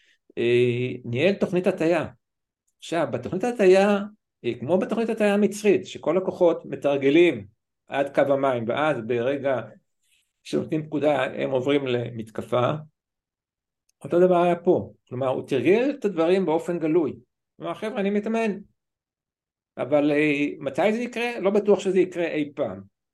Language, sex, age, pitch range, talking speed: Hebrew, male, 60-79, 135-200 Hz, 125 wpm